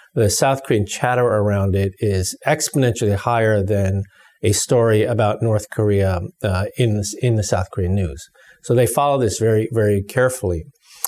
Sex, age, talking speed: male, 40-59, 160 wpm